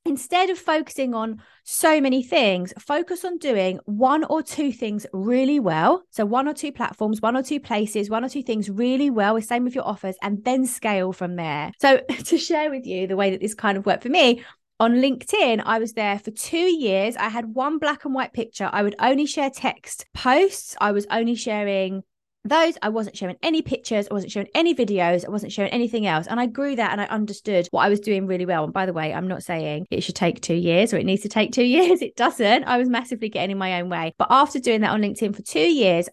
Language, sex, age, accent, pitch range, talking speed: English, female, 20-39, British, 195-265 Hz, 240 wpm